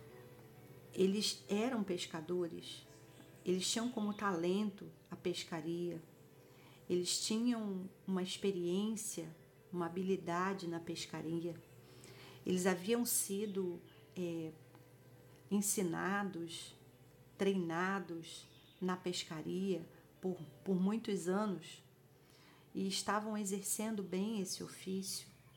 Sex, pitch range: female, 170-215 Hz